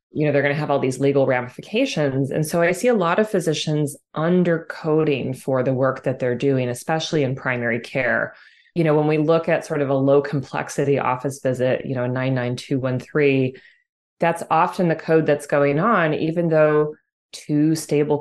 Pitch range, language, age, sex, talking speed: 140-175 Hz, English, 20-39, female, 180 wpm